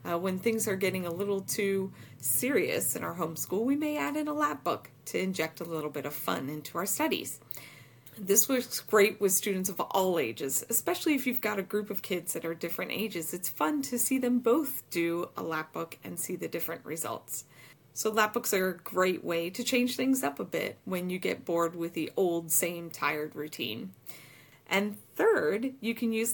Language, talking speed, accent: English, 210 wpm, American